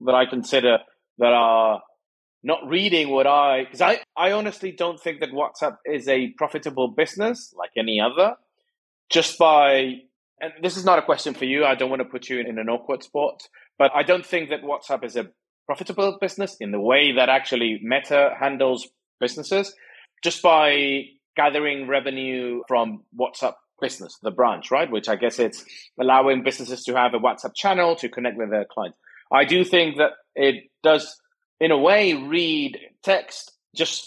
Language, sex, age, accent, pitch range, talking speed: English, male, 30-49, British, 130-170 Hz, 180 wpm